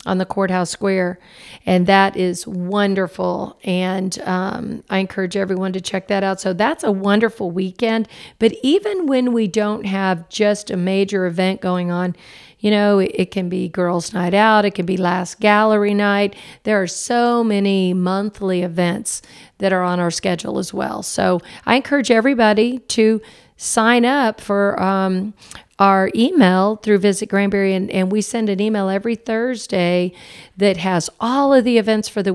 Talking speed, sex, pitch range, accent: 175 wpm, female, 185-215 Hz, American